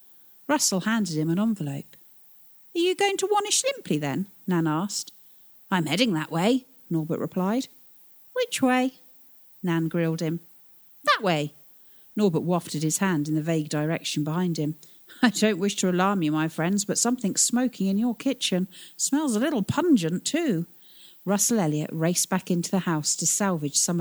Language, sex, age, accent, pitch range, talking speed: English, female, 40-59, British, 160-240 Hz, 165 wpm